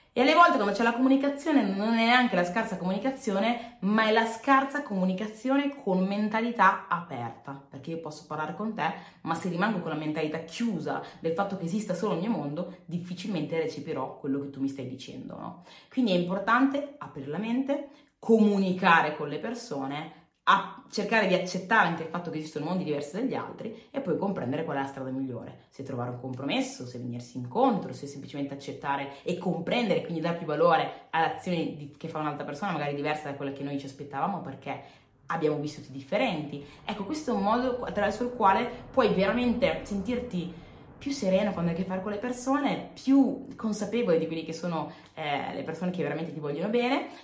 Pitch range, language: 150-215 Hz, Italian